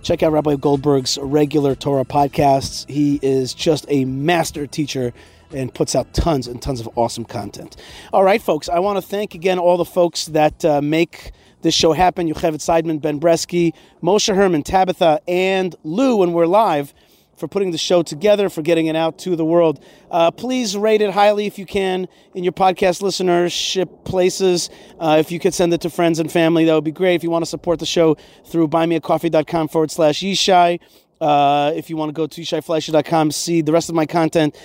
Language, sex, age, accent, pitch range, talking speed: English, male, 40-59, American, 150-180 Hz, 200 wpm